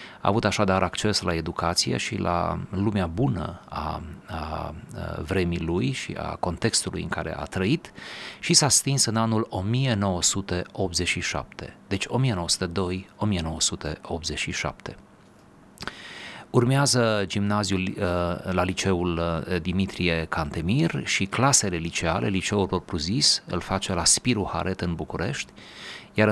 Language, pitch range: Romanian, 90-110 Hz